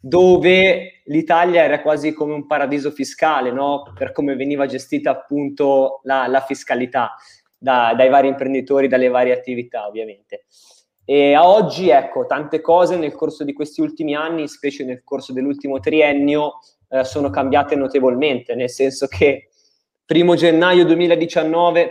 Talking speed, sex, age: 140 wpm, male, 20-39